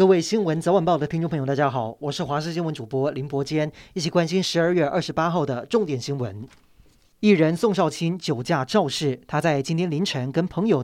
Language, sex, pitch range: Chinese, male, 140-180 Hz